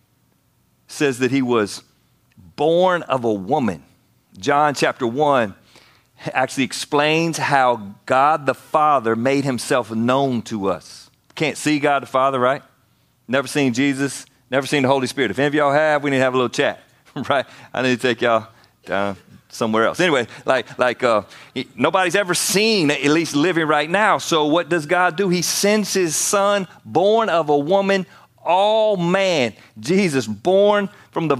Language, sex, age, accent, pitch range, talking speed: English, male, 40-59, American, 130-185 Hz, 170 wpm